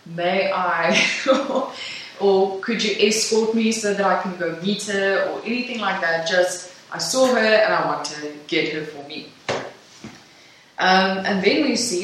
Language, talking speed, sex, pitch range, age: English, 175 wpm, female, 175-220 Hz, 20-39